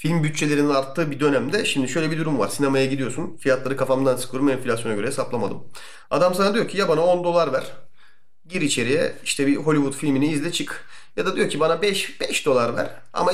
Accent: native